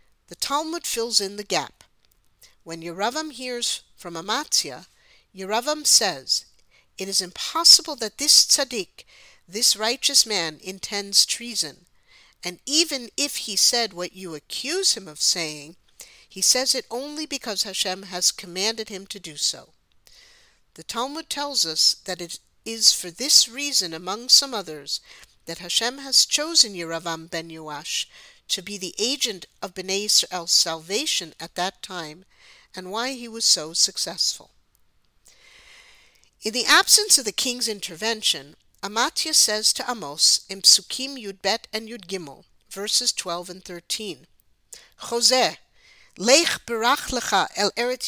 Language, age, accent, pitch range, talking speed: English, 50-69, American, 180-255 Hz, 135 wpm